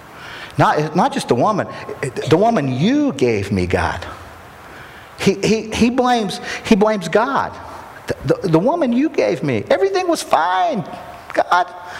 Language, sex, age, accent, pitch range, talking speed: English, male, 50-69, American, 135-220 Hz, 145 wpm